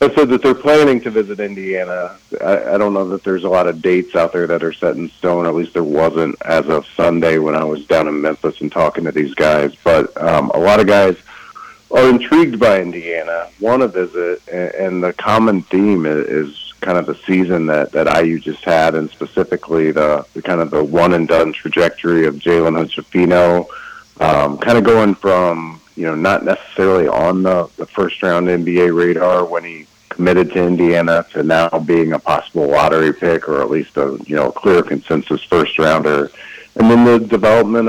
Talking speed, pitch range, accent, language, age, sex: 200 wpm, 80-95 Hz, American, English, 40-59, male